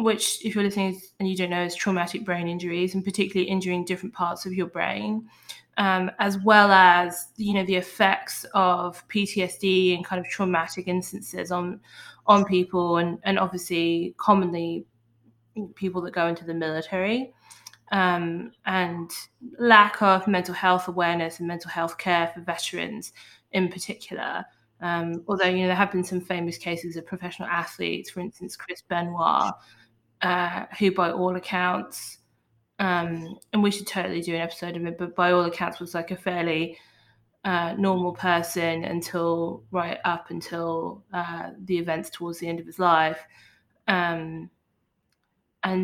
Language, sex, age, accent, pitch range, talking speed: English, female, 20-39, British, 170-185 Hz, 160 wpm